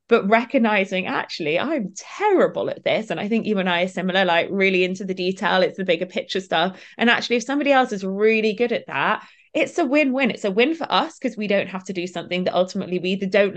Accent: British